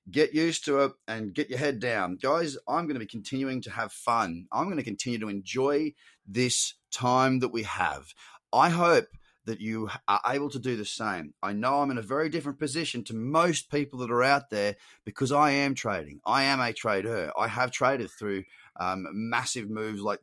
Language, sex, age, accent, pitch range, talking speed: English, male, 30-49, Australian, 105-135 Hz, 210 wpm